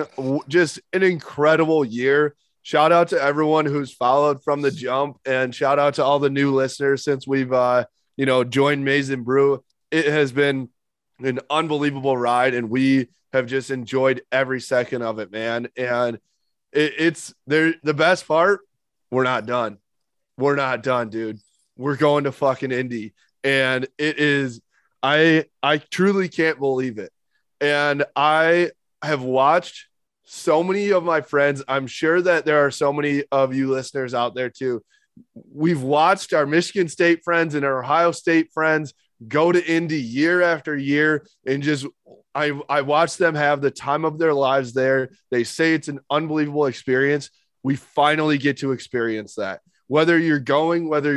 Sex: male